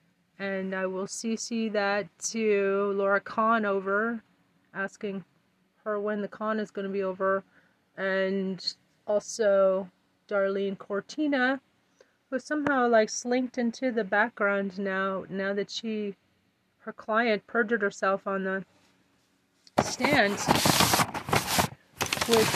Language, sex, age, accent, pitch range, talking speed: English, female, 30-49, American, 195-225 Hz, 110 wpm